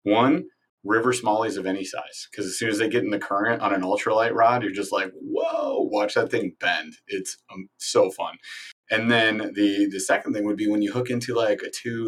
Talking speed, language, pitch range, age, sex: 230 wpm, English, 95-120 Hz, 30-49, male